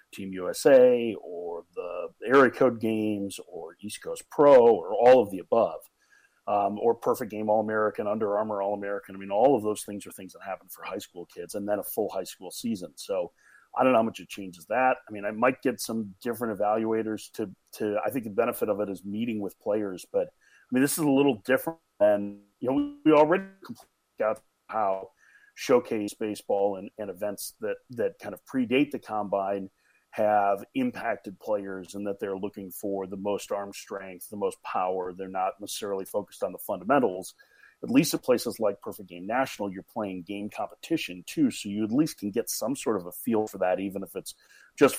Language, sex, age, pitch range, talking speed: English, male, 40-59, 100-130 Hz, 210 wpm